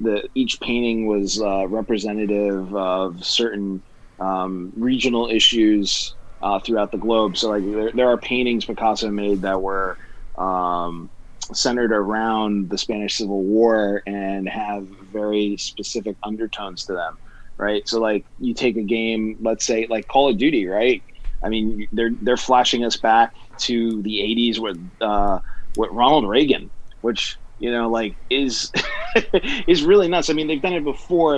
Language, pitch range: English, 105-125 Hz